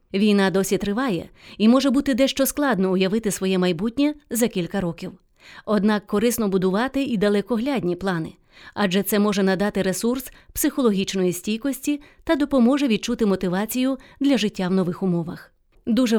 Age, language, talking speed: 30-49, English, 135 wpm